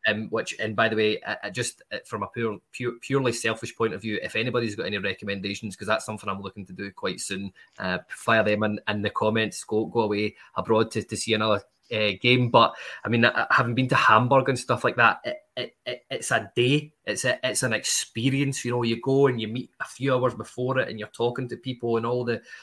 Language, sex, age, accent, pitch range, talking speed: English, male, 20-39, British, 110-125 Hz, 240 wpm